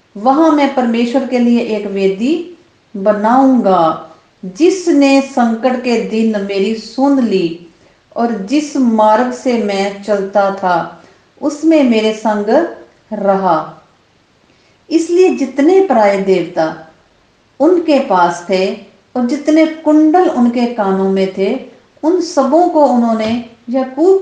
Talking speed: 110 wpm